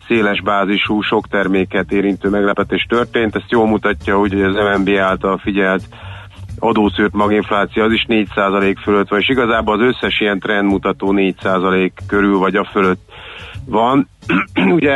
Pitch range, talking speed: 100-110 Hz, 140 wpm